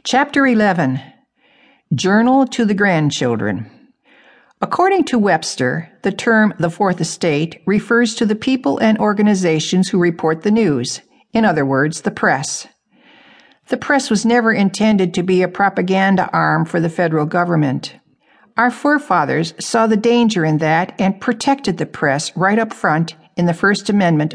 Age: 60-79